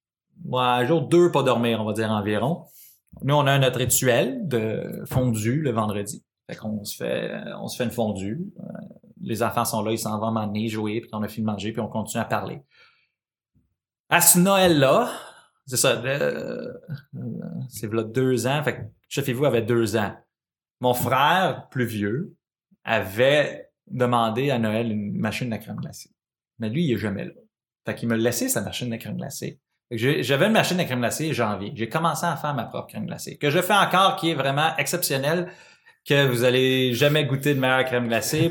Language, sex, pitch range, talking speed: French, male, 115-150 Hz, 200 wpm